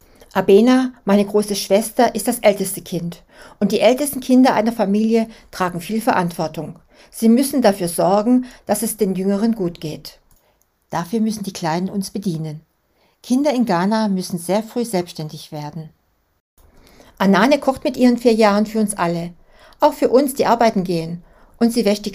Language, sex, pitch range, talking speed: German, female, 185-240 Hz, 165 wpm